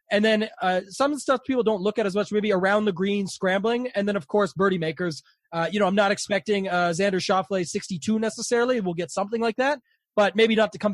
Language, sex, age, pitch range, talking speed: English, male, 20-39, 180-215 Hz, 235 wpm